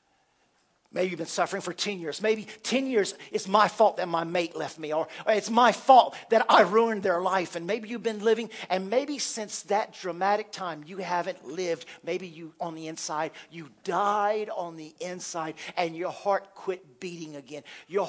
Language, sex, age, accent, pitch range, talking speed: English, male, 50-69, American, 175-220 Hz, 190 wpm